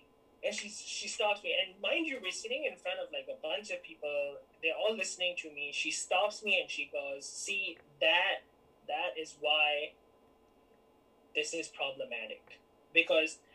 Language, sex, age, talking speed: English, male, 20-39, 170 wpm